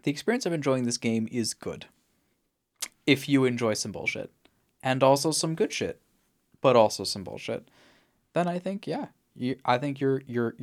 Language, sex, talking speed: English, male, 175 wpm